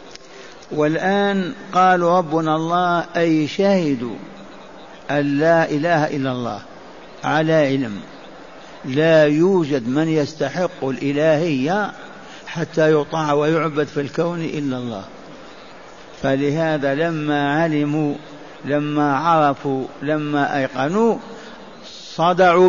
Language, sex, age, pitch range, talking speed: Arabic, male, 60-79, 140-170 Hz, 85 wpm